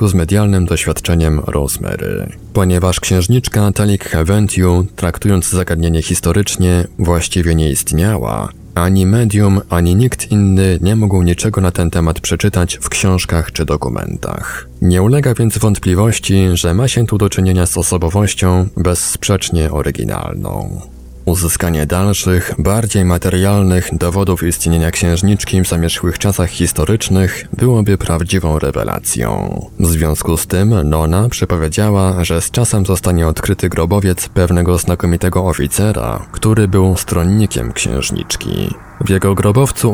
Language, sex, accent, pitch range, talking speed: Polish, male, native, 85-100 Hz, 120 wpm